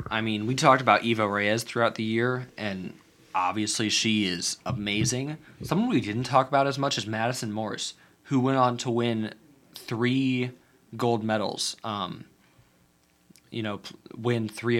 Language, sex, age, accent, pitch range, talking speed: English, male, 20-39, American, 100-115 Hz, 155 wpm